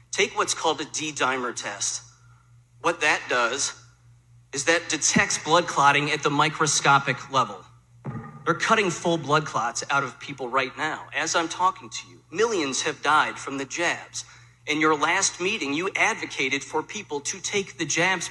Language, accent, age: English, American, 40-59